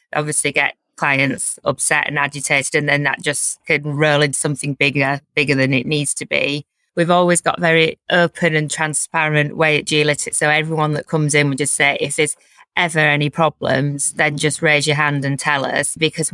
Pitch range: 140-155 Hz